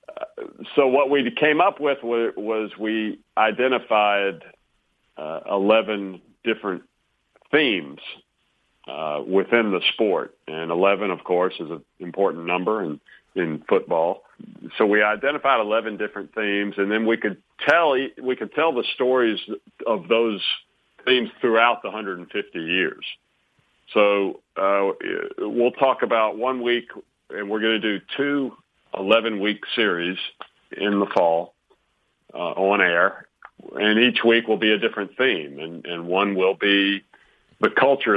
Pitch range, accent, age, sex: 90-115 Hz, American, 50-69, male